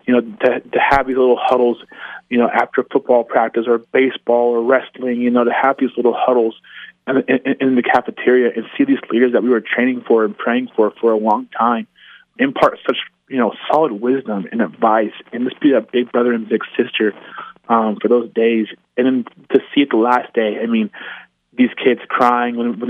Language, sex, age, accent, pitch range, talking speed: English, male, 20-39, American, 115-130 Hz, 210 wpm